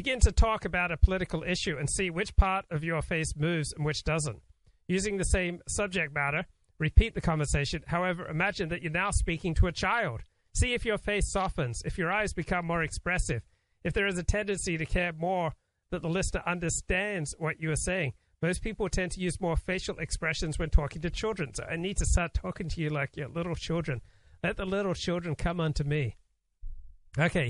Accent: American